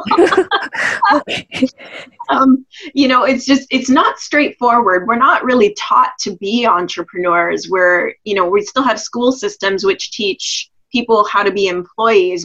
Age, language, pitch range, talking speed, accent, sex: 20-39, English, 185-260 Hz, 145 wpm, American, female